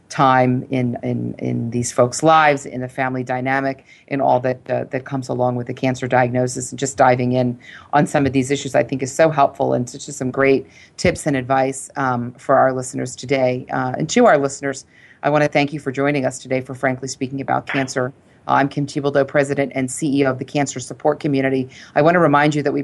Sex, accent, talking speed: female, American, 230 wpm